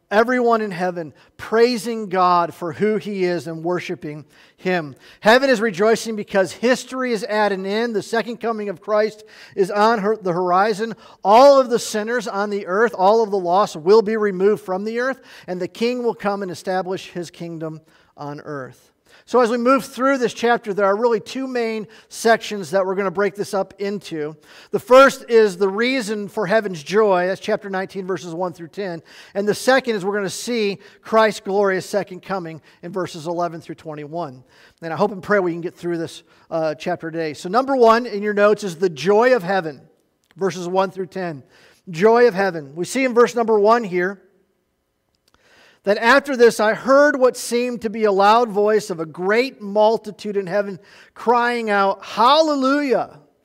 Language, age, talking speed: English, 50-69, 190 wpm